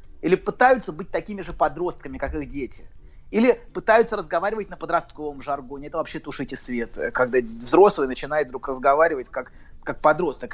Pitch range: 140-210 Hz